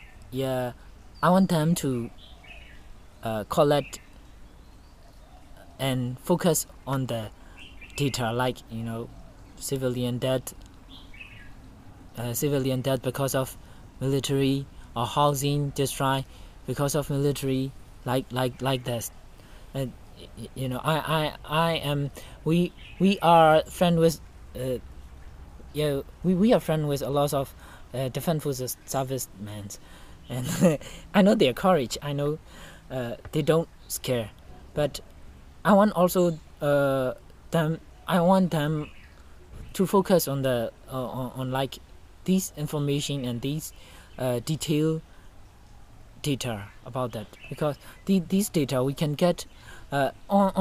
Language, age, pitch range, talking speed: English, 20-39, 110-150 Hz, 125 wpm